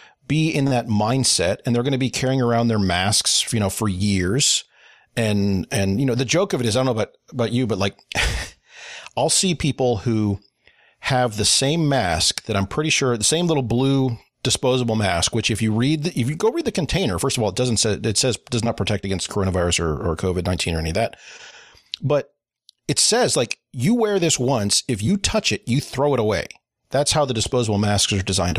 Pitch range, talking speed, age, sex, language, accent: 105-140 Hz, 225 wpm, 40-59, male, English, American